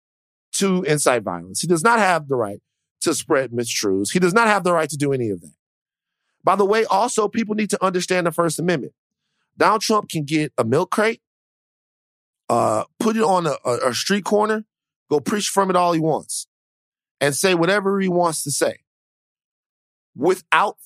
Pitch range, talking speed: 145-205 Hz, 185 wpm